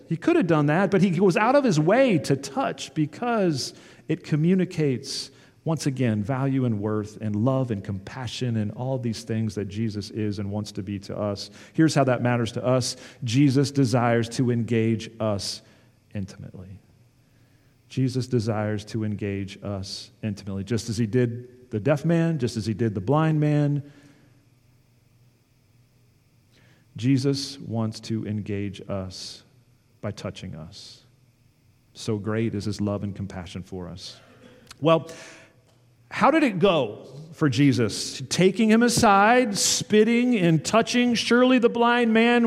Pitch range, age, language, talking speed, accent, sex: 115-155 Hz, 40-59, English, 150 wpm, American, male